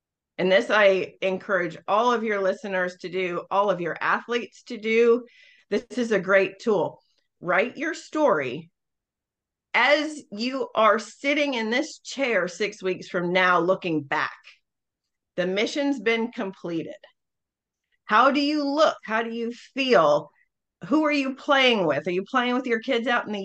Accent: American